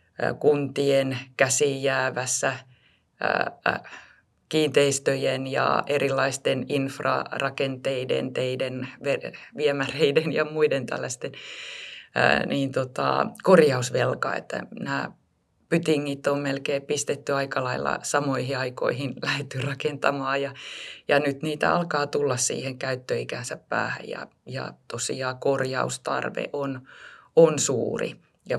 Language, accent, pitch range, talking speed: Finnish, native, 130-145 Hz, 90 wpm